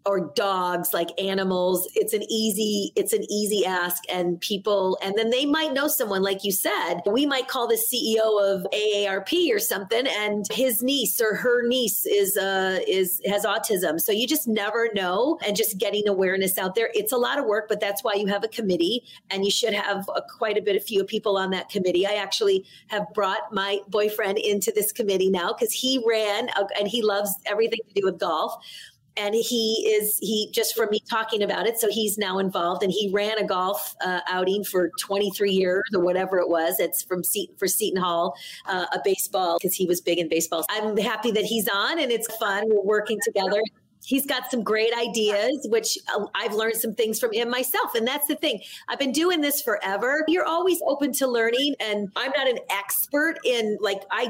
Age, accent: 30-49, American